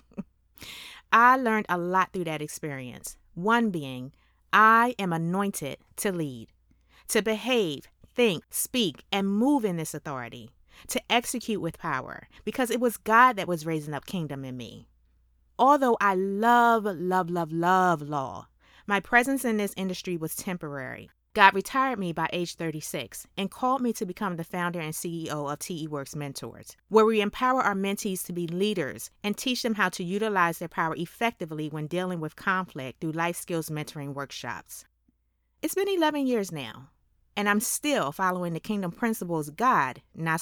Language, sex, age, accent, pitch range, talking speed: English, female, 30-49, American, 155-220 Hz, 165 wpm